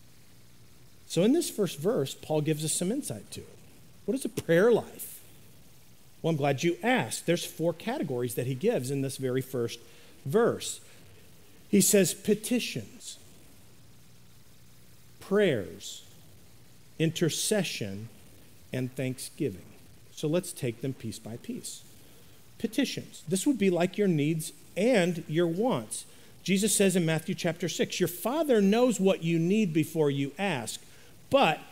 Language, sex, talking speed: English, male, 140 wpm